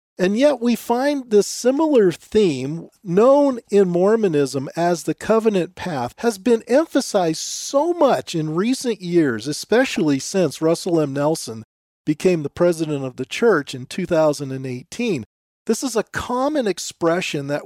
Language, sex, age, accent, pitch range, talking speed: English, male, 40-59, American, 150-230 Hz, 140 wpm